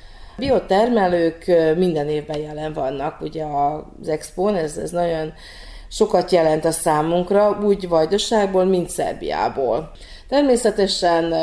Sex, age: female, 40-59